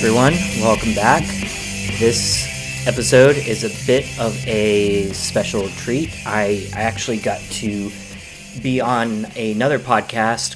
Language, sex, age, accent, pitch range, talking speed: English, male, 30-49, American, 105-125 Hz, 120 wpm